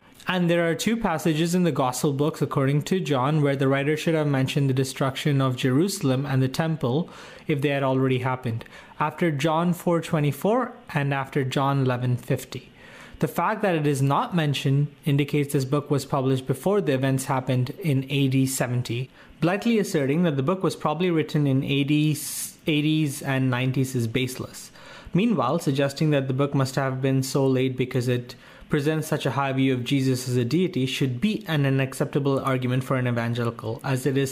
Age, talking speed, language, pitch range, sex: 30-49, 180 wpm, English, 130-155 Hz, male